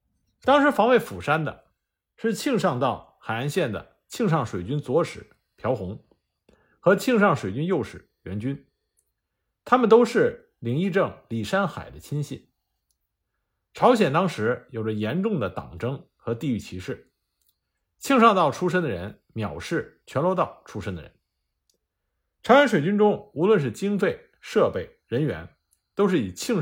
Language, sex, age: Chinese, male, 50-69